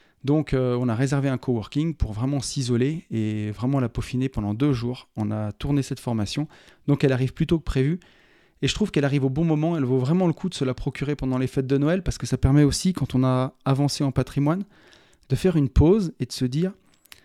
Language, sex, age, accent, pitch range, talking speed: French, male, 30-49, French, 125-160 Hz, 245 wpm